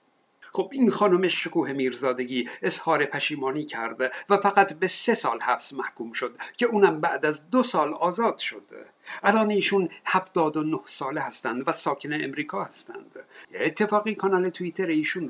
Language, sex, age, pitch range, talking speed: Persian, male, 60-79, 170-215 Hz, 145 wpm